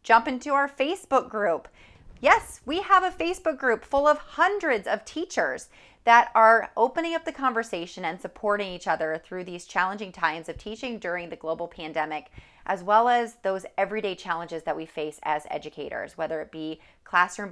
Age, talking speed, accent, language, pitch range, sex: 30-49, 175 wpm, American, English, 170-240 Hz, female